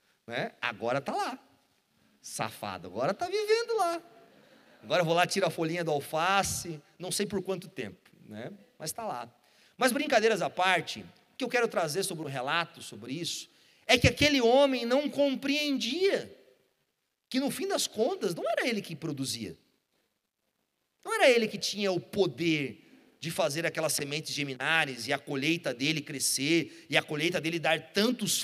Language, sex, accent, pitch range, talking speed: Portuguese, male, Brazilian, 160-255 Hz, 165 wpm